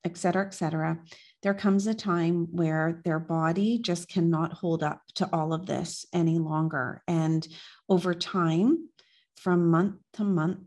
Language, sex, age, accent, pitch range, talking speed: English, female, 40-59, American, 165-195 Hz, 155 wpm